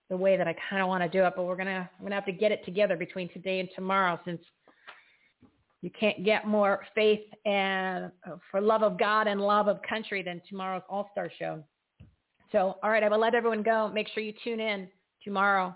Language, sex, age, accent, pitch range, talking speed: English, female, 40-59, American, 185-215 Hz, 215 wpm